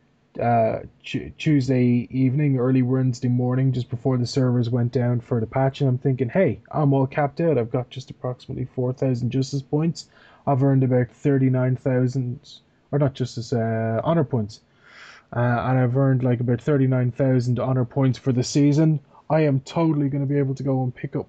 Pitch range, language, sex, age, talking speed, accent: 120-140 Hz, English, male, 20-39, 185 wpm, Irish